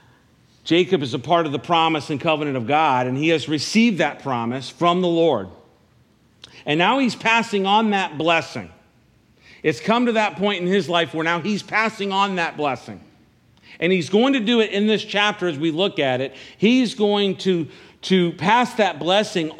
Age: 50-69